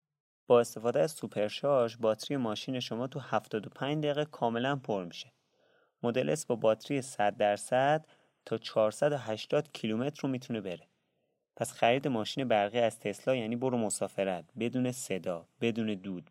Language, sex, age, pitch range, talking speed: Persian, male, 30-49, 100-130 Hz, 135 wpm